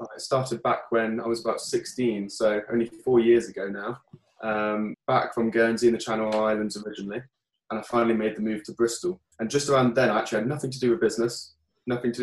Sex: male